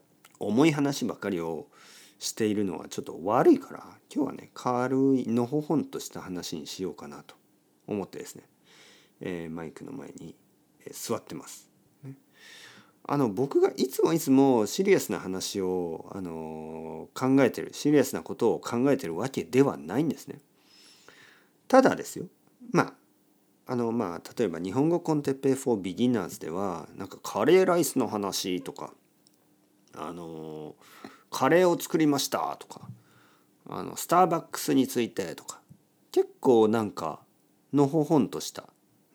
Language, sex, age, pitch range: Japanese, male, 50-69, 95-140 Hz